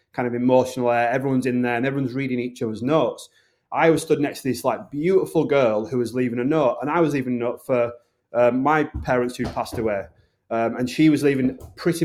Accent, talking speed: British, 225 wpm